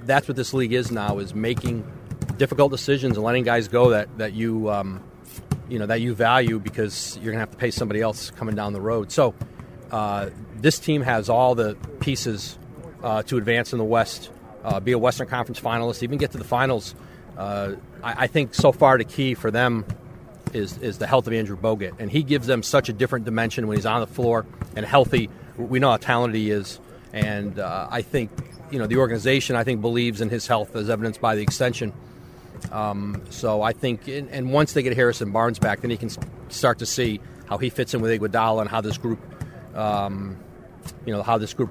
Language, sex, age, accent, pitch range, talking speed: English, male, 30-49, American, 110-125 Hz, 215 wpm